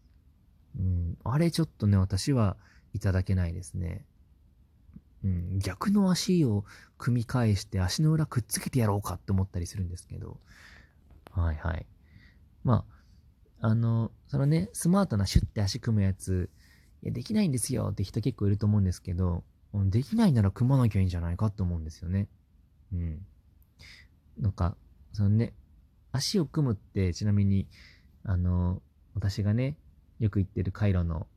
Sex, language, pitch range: male, Japanese, 90-115 Hz